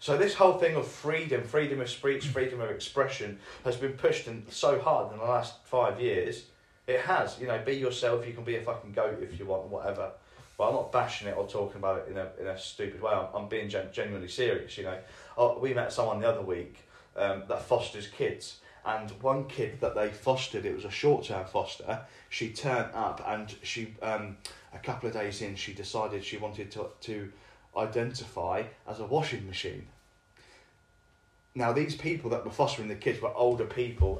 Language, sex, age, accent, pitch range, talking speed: English, male, 20-39, British, 105-140 Hz, 200 wpm